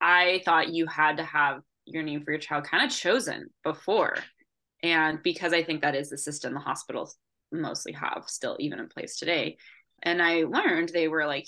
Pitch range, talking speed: 150-180 Hz, 200 wpm